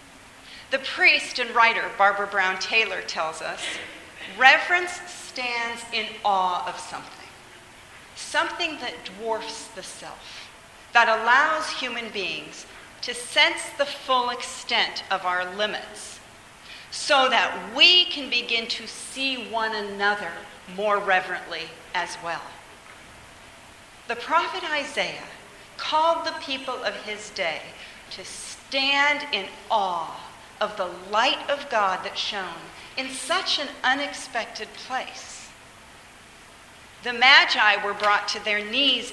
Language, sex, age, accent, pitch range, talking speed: English, female, 40-59, American, 210-285 Hz, 120 wpm